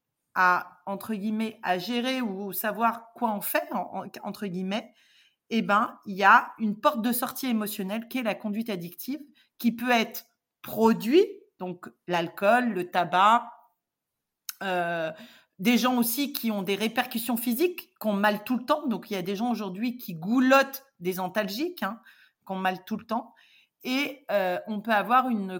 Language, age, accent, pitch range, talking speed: French, 40-59, French, 200-250 Hz, 175 wpm